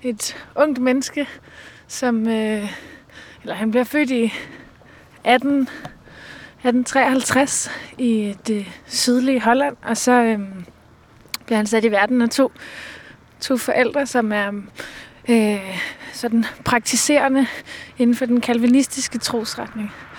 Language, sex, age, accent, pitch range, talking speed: Danish, female, 20-39, native, 225-255 Hz, 115 wpm